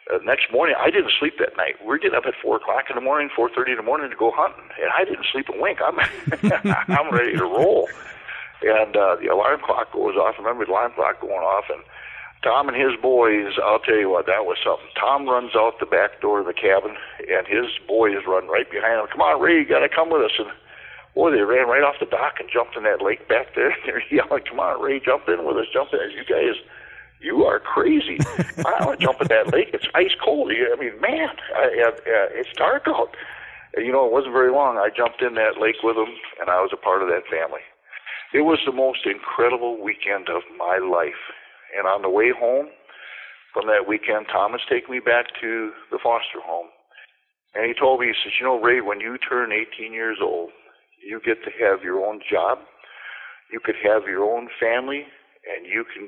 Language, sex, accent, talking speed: English, male, American, 230 wpm